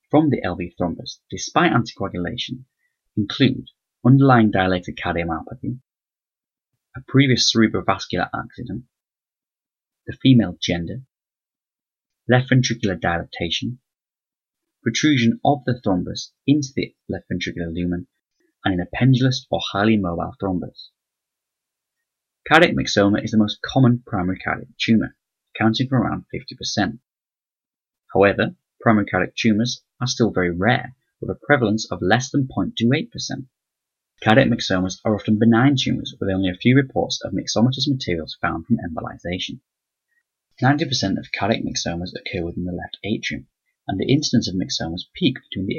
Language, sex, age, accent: English, male, 20-39, British